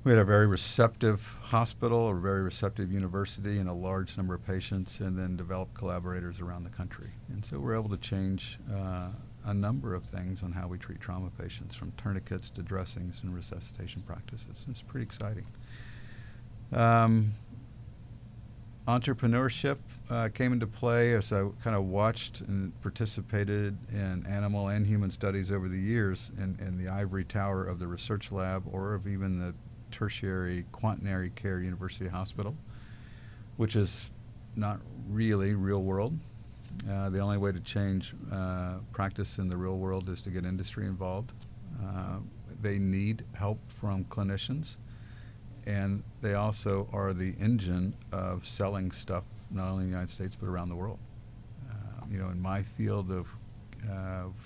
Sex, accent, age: male, American, 50-69